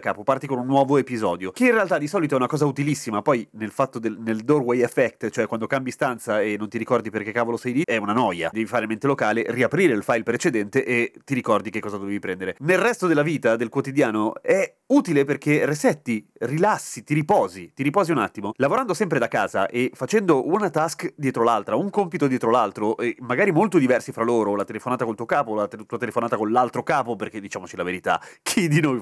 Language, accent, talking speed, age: Italian, native, 225 wpm, 30-49